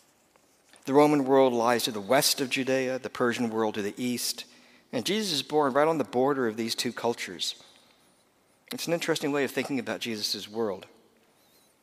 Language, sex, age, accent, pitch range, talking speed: English, male, 50-69, American, 110-145 Hz, 185 wpm